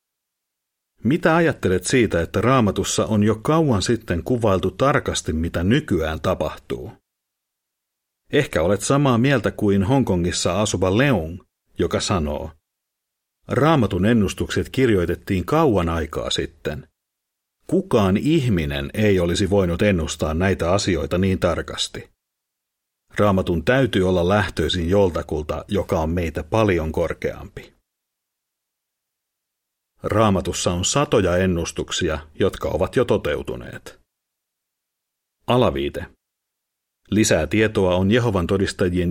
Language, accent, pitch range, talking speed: Finnish, native, 90-110 Hz, 100 wpm